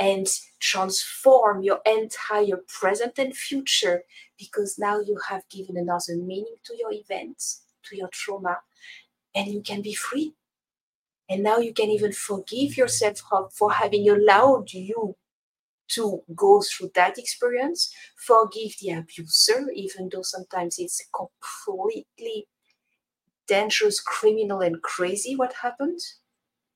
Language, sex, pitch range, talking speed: English, female, 170-245 Hz, 125 wpm